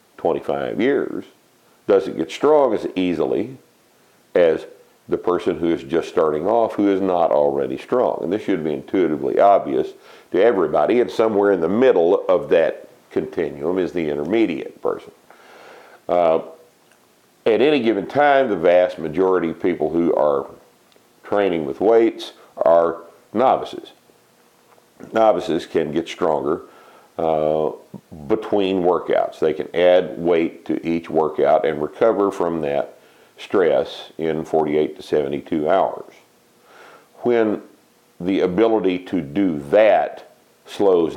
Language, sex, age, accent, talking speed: English, male, 50-69, American, 130 wpm